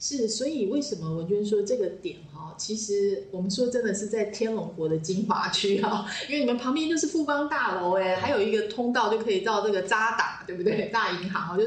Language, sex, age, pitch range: Chinese, female, 20-39, 185-245 Hz